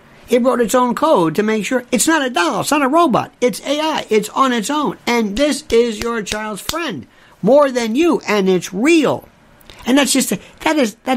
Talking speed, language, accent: 210 wpm, English, American